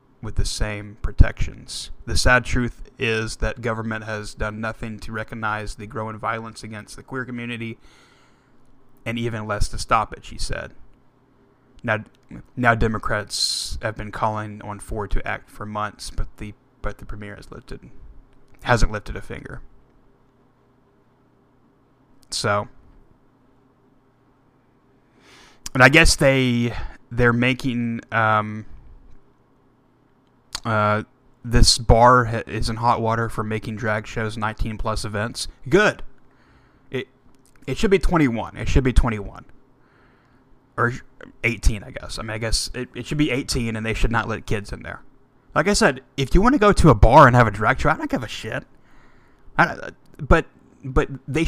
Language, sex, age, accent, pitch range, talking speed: English, male, 20-39, American, 110-130 Hz, 150 wpm